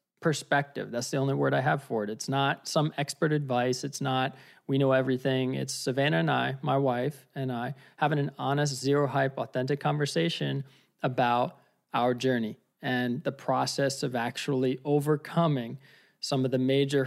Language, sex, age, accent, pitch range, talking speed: English, male, 20-39, American, 130-155 Hz, 180 wpm